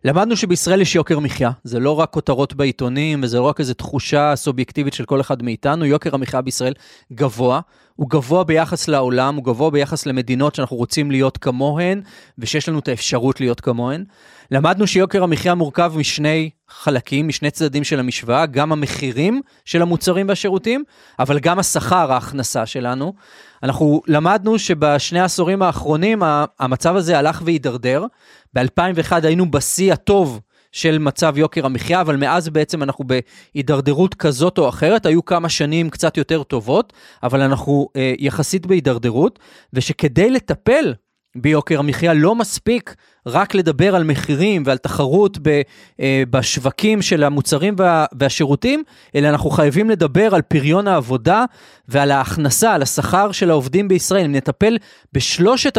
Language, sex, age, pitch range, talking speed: Hebrew, male, 30-49, 140-180 Hz, 140 wpm